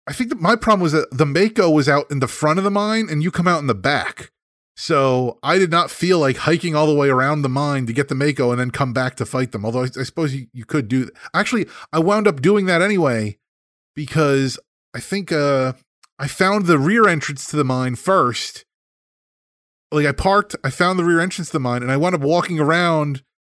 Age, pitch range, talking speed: 30-49, 115-155 Hz, 240 wpm